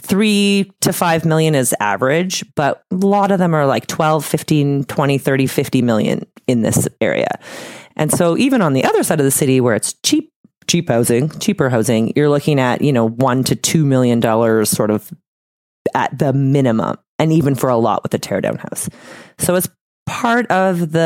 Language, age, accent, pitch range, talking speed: English, 30-49, American, 120-170 Hz, 195 wpm